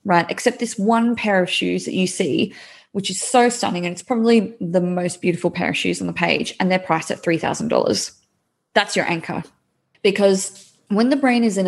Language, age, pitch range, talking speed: English, 20-39, 170-230 Hz, 205 wpm